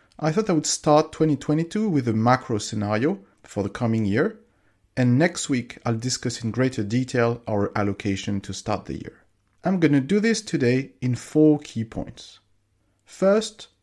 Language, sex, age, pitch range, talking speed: English, male, 40-59, 105-150 Hz, 170 wpm